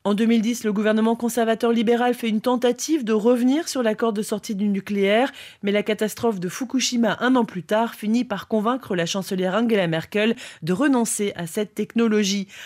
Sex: female